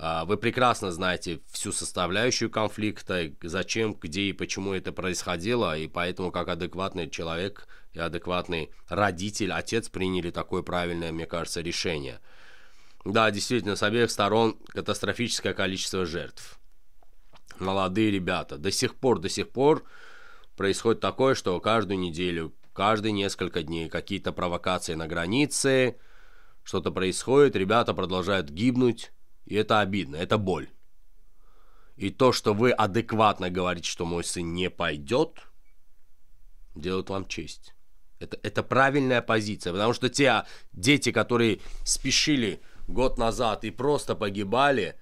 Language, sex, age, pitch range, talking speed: Russian, male, 20-39, 95-130 Hz, 125 wpm